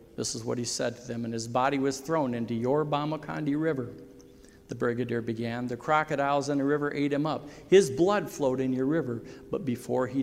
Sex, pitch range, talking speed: male, 120-145 Hz, 210 wpm